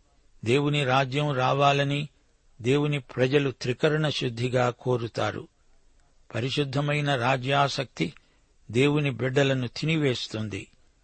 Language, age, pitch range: Telugu, 60-79, 120-145 Hz